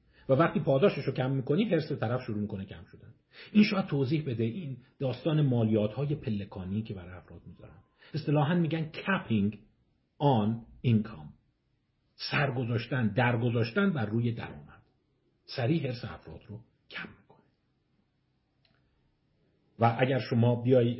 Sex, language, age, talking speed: male, Persian, 50-69, 125 wpm